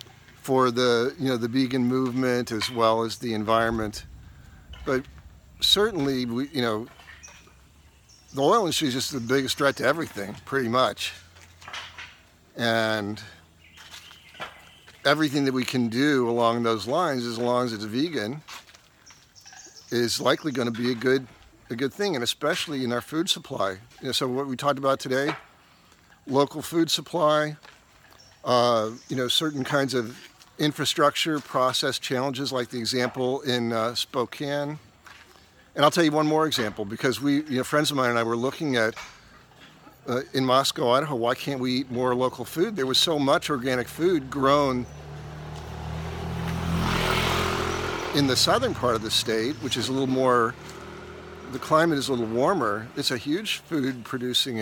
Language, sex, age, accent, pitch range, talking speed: English, male, 50-69, American, 115-140 Hz, 160 wpm